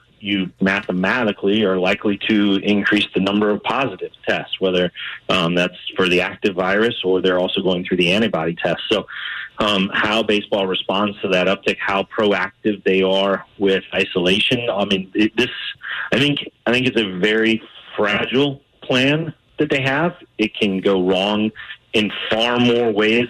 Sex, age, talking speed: male, 30-49, 160 wpm